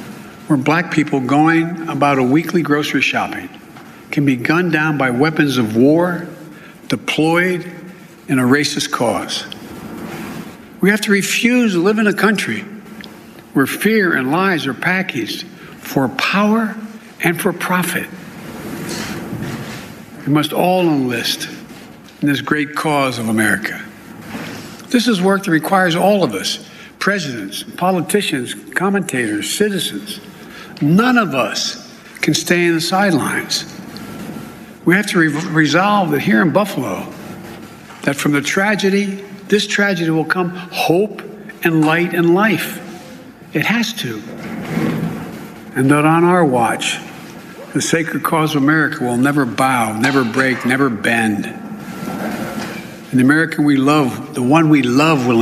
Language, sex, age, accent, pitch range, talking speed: English, male, 60-79, American, 145-195 Hz, 135 wpm